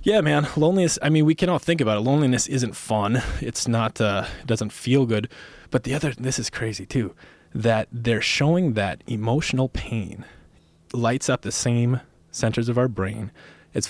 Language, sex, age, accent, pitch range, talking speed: English, male, 20-39, American, 105-135 Hz, 180 wpm